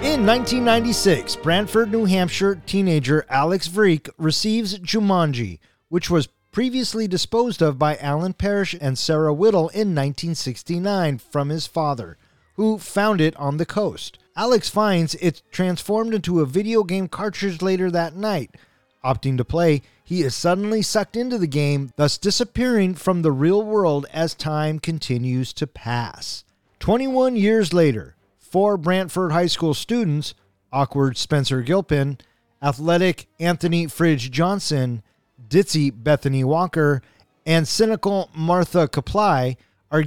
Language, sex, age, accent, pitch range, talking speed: English, male, 30-49, American, 140-190 Hz, 130 wpm